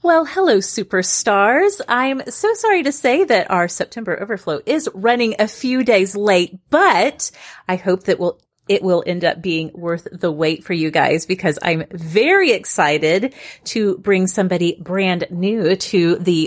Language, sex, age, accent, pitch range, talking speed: English, female, 30-49, American, 170-235 Hz, 165 wpm